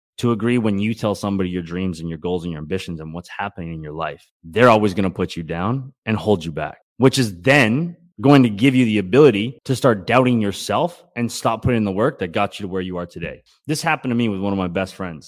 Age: 20-39